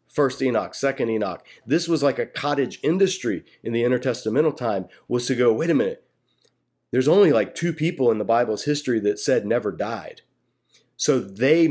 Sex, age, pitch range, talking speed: male, 30-49, 120-155 Hz, 180 wpm